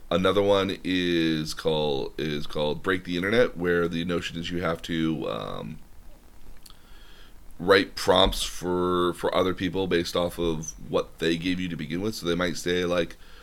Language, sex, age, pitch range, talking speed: English, male, 30-49, 80-90 Hz, 170 wpm